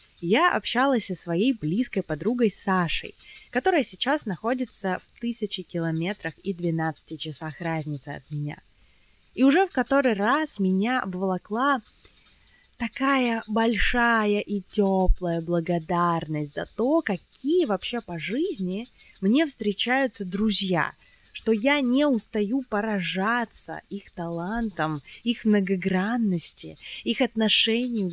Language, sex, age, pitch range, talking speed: Russian, female, 20-39, 165-245 Hz, 110 wpm